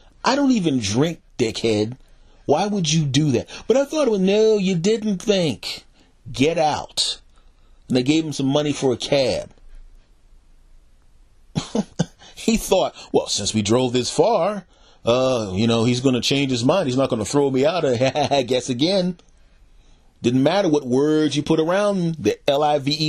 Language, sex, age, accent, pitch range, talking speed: English, male, 40-59, American, 125-185 Hz, 165 wpm